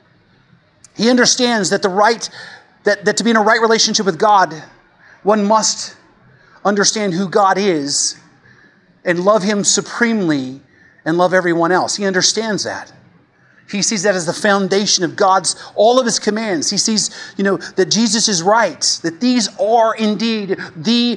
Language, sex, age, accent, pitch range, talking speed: English, male, 40-59, American, 190-230 Hz, 160 wpm